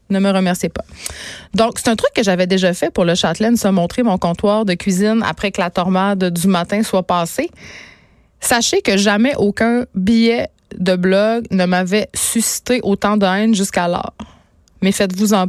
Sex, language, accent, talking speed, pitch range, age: female, French, Canadian, 180 wpm, 185-215 Hz, 20-39